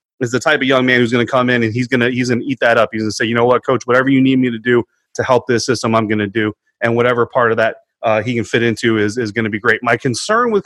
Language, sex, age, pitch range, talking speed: English, male, 30-49, 115-135 Hz, 350 wpm